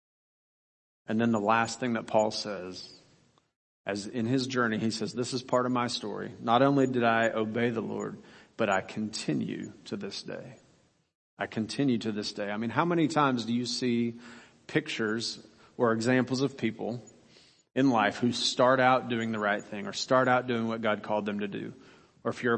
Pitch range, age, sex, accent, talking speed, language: 115-135 Hz, 40-59, male, American, 195 wpm, English